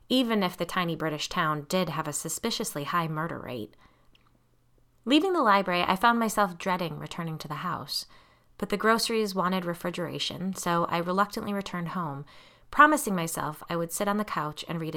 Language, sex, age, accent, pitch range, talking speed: English, female, 30-49, American, 165-210 Hz, 175 wpm